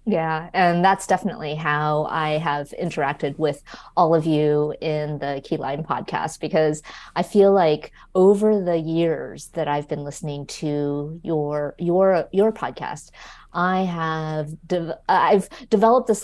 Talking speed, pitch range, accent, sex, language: 140 wpm, 155-195 Hz, American, female, English